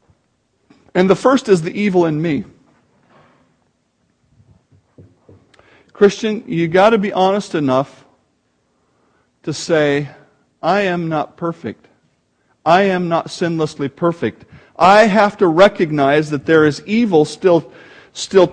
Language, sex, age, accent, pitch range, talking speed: English, male, 50-69, American, 165-225 Hz, 115 wpm